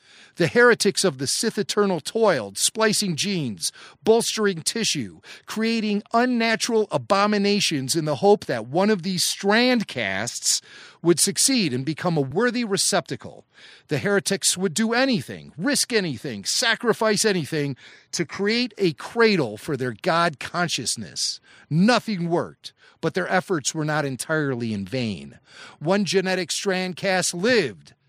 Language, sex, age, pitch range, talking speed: English, male, 40-59, 155-225 Hz, 130 wpm